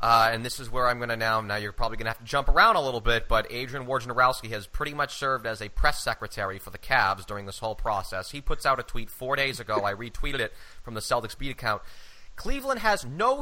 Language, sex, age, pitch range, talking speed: English, male, 30-49, 110-150 Hz, 265 wpm